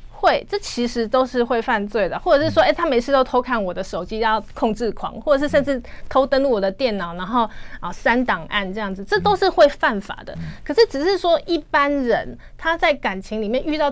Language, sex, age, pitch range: Chinese, female, 30-49, 205-275 Hz